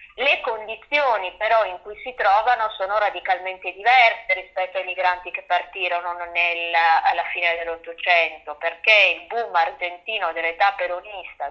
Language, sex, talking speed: Italian, female, 125 wpm